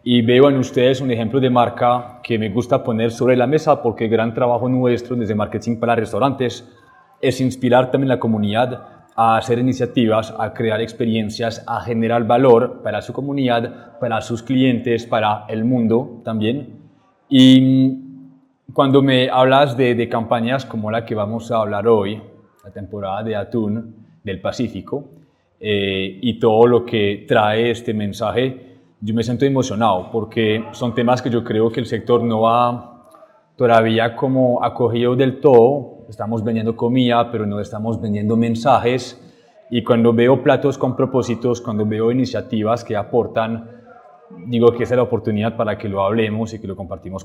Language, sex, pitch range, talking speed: Spanish, male, 110-125 Hz, 165 wpm